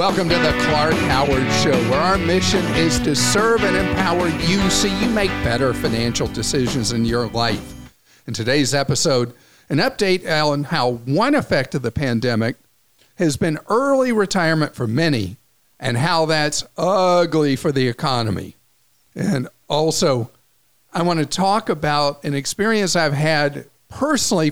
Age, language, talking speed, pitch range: 50-69, English, 150 wpm, 120-160 Hz